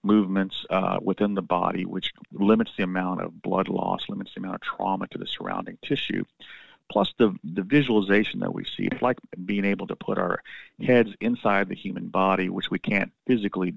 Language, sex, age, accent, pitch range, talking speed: English, male, 40-59, American, 90-105 Hz, 190 wpm